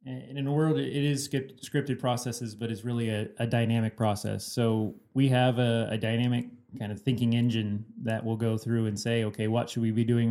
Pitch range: 110-130 Hz